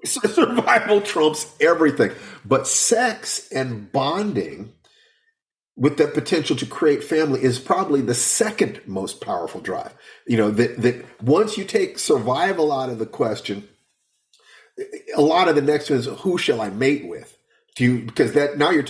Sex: male